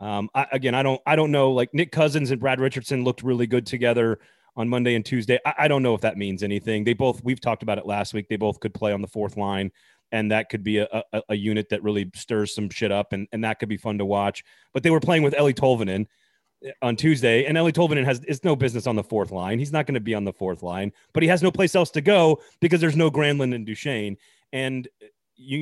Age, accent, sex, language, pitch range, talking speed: 30-49, American, male, English, 105-140 Hz, 265 wpm